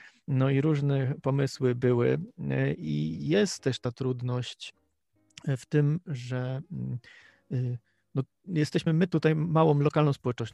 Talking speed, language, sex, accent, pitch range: 115 wpm, Polish, male, native, 130-155 Hz